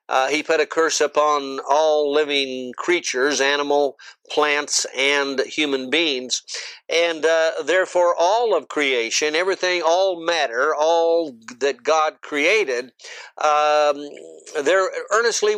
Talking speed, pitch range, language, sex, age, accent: 115 wpm, 140-180 Hz, English, male, 60-79, American